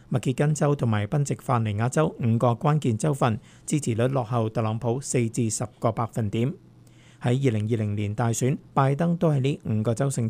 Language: Chinese